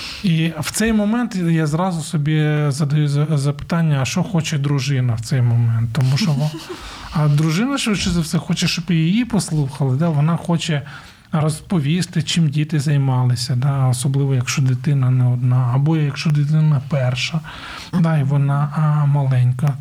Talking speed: 150 wpm